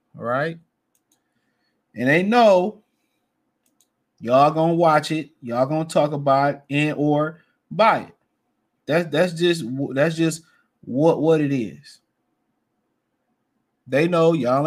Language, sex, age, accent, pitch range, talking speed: English, male, 20-39, American, 130-155 Hz, 125 wpm